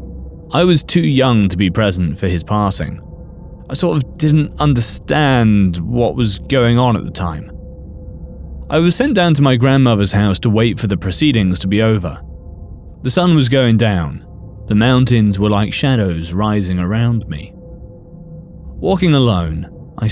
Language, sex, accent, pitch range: English, male, British, 90-130 Hz